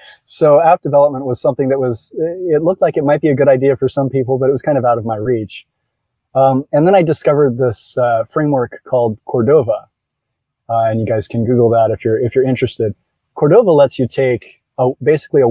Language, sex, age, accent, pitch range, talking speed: English, male, 30-49, American, 110-130 Hz, 215 wpm